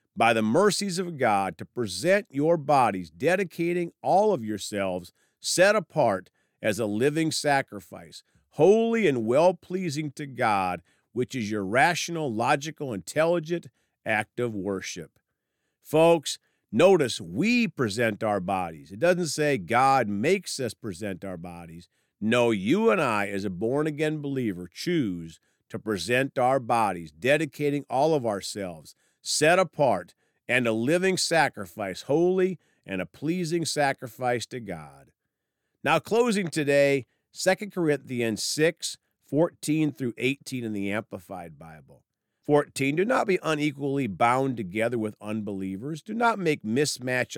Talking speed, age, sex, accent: 135 wpm, 50-69, male, American